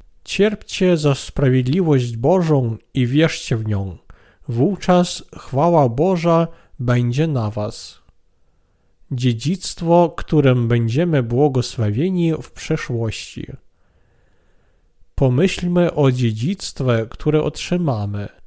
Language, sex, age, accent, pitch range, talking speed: Polish, male, 40-59, native, 125-165 Hz, 80 wpm